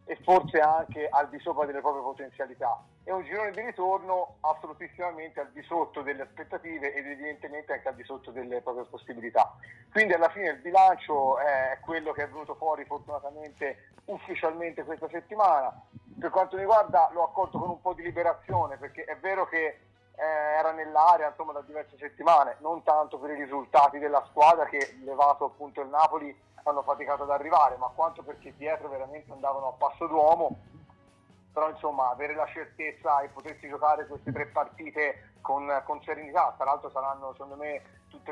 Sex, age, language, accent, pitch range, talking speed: male, 40-59, Italian, native, 140-160 Hz, 175 wpm